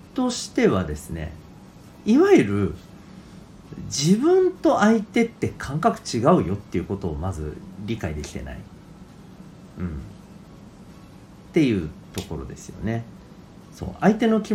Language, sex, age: Japanese, male, 40-59